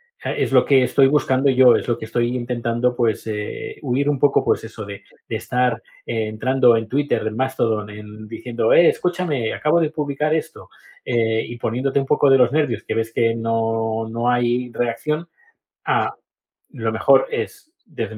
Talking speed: 180 wpm